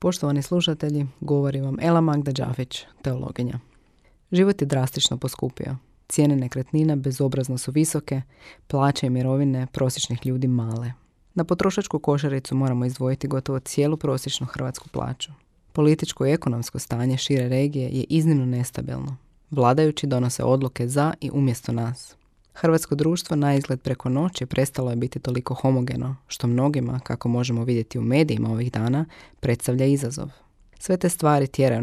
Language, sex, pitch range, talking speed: Croatian, female, 125-145 Hz, 140 wpm